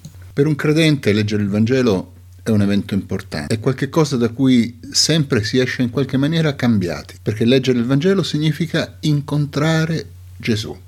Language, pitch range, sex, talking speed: Italian, 90-140 Hz, male, 155 wpm